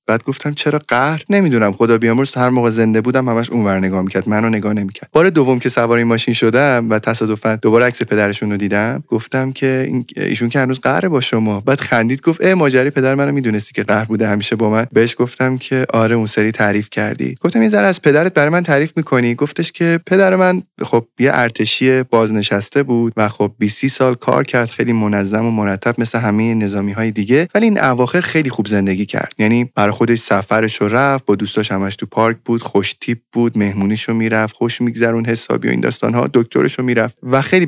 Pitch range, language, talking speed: 110-135 Hz, Persian, 210 wpm